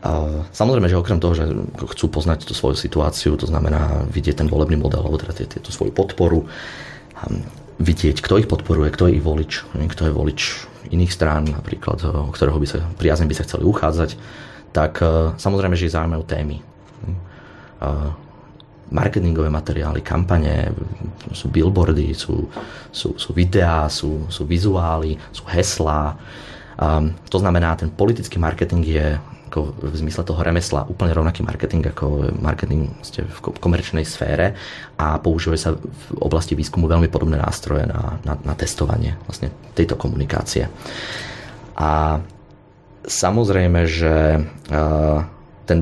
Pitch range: 75-90 Hz